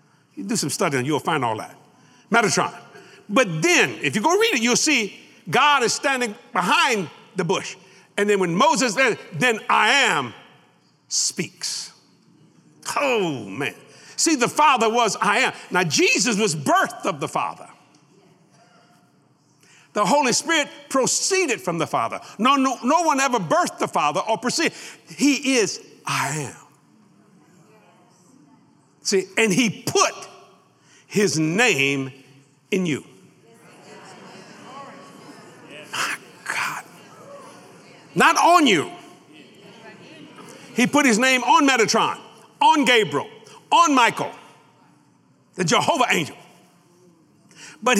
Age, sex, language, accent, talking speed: 60-79, male, English, American, 120 wpm